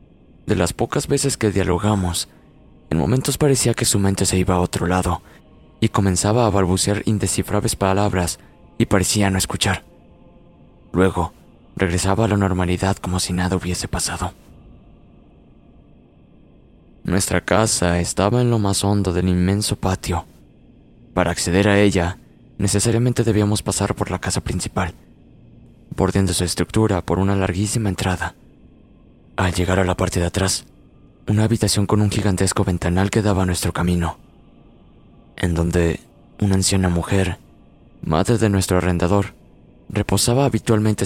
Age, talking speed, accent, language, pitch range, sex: 20-39, 135 wpm, Mexican, Spanish, 90-100 Hz, male